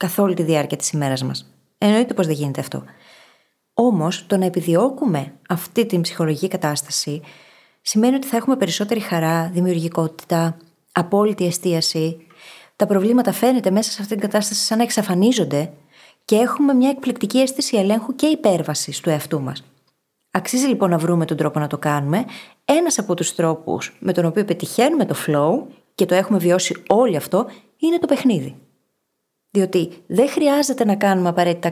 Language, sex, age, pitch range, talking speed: Greek, female, 20-39, 170-220 Hz, 160 wpm